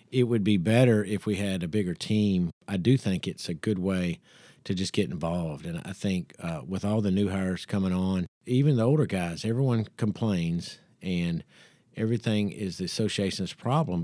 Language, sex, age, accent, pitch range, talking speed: English, male, 50-69, American, 95-115 Hz, 190 wpm